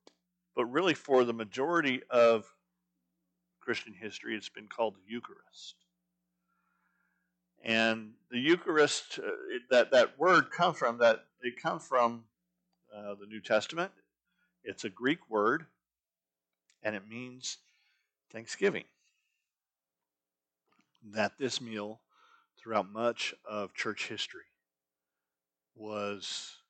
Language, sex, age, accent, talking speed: English, male, 50-69, American, 100 wpm